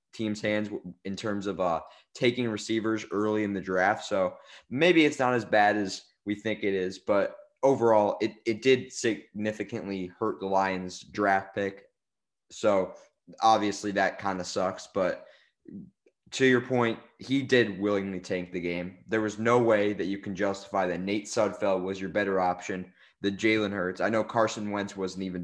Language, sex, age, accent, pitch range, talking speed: English, male, 20-39, American, 95-110 Hz, 175 wpm